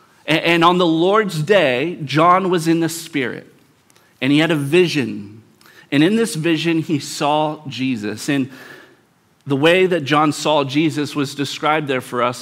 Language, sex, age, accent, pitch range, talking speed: English, male, 40-59, American, 140-175 Hz, 165 wpm